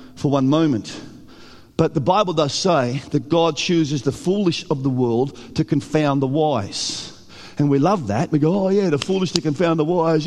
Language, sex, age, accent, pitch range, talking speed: English, male, 50-69, Australian, 165-250 Hz, 200 wpm